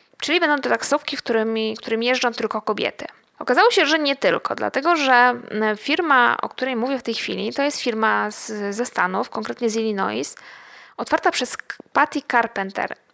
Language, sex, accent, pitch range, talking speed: Polish, female, native, 215-270 Hz, 165 wpm